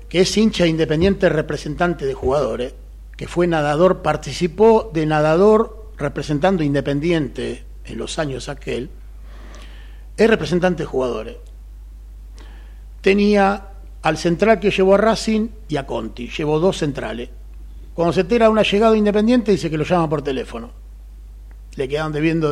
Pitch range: 130-195 Hz